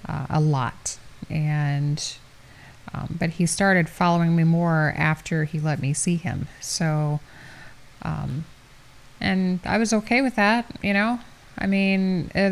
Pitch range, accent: 150-185 Hz, American